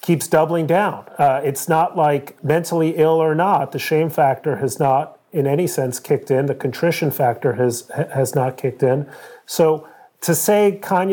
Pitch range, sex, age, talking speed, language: 135-165 Hz, male, 40-59, 180 wpm, English